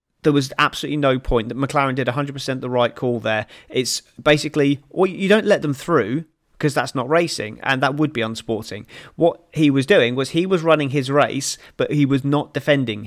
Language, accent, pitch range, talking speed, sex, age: English, British, 115-140 Hz, 205 wpm, male, 30-49